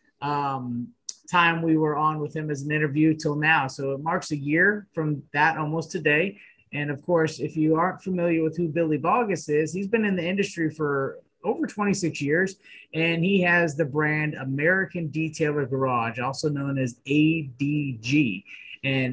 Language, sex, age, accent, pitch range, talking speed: English, male, 30-49, American, 135-165 Hz, 175 wpm